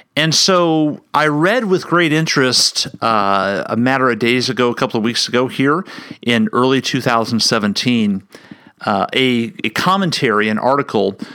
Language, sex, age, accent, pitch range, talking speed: English, male, 40-59, American, 115-145 Hz, 150 wpm